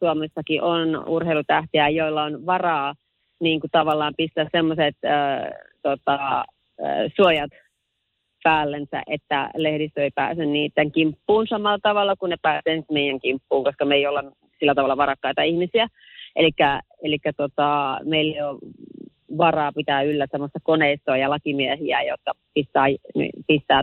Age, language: 30-49, Finnish